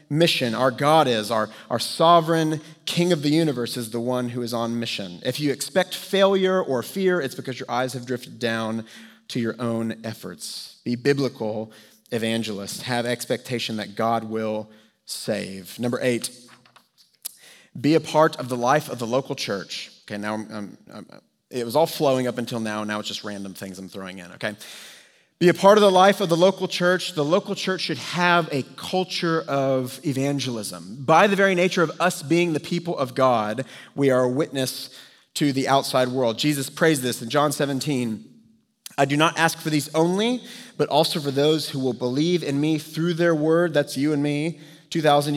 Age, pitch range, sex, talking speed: 30-49, 120-160 Hz, male, 190 wpm